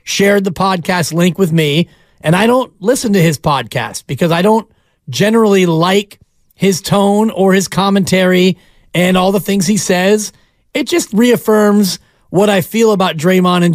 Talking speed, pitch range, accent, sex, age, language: 165 wpm, 165-205 Hz, American, male, 30-49, English